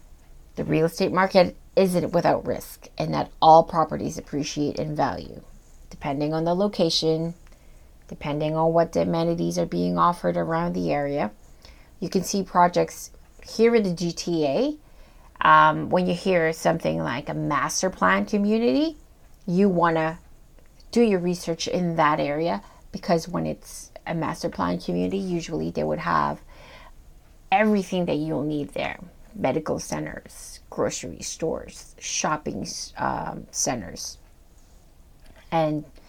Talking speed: 130 wpm